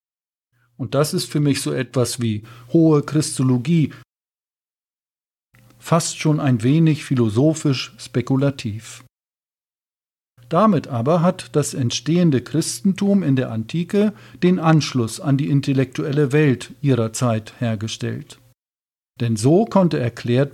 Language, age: German, 50-69